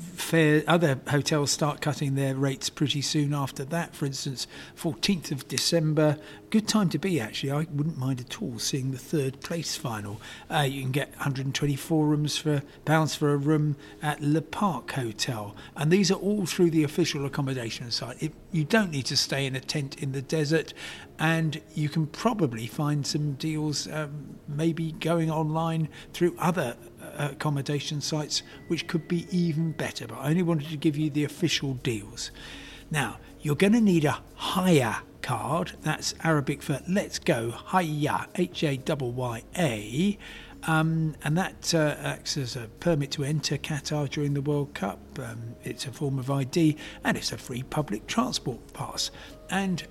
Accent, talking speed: British, 165 wpm